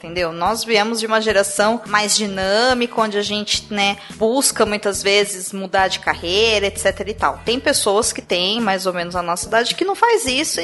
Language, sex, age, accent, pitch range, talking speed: Portuguese, female, 20-39, Brazilian, 210-275 Hz, 195 wpm